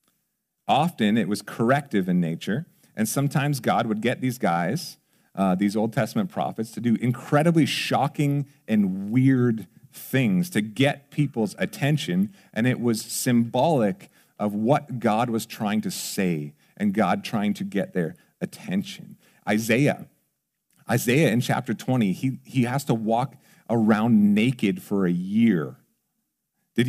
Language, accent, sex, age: English, American, male, 40-59